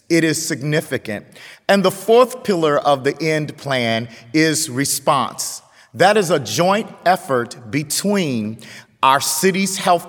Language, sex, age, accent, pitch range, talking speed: English, male, 40-59, American, 135-175 Hz, 130 wpm